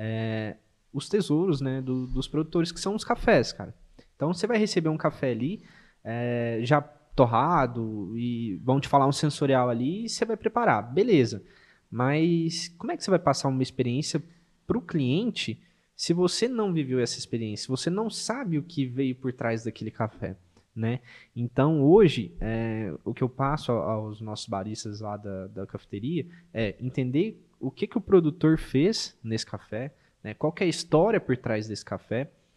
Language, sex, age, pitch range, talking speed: Portuguese, male, 20-39, 120-175 Hz, 180 wpm